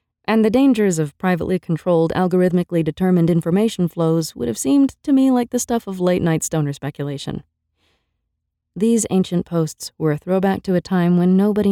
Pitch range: 145-200 Hz